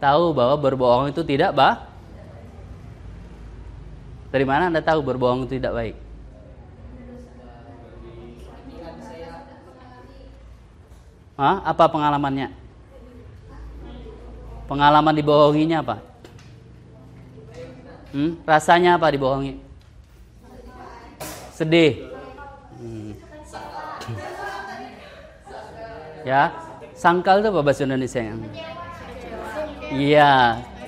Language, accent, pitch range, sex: Indonesian, native, 115-140 Hz, male